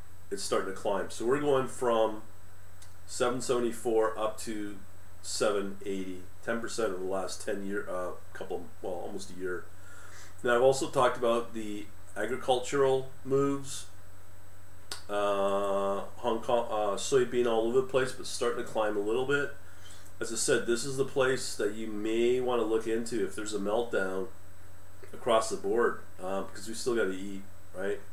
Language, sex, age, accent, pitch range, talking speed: English, male, 40-59, American, 95-115 Hz, 165 wpm